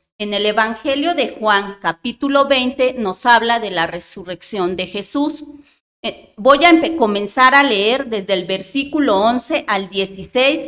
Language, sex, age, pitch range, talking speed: Spanish, female, 40-59, 200-275 Hz, 140 wpm